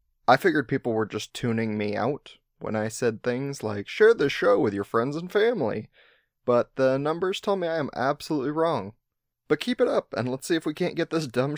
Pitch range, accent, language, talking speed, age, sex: 110-155 Hz, American, English, 225 wpm, 30-49, male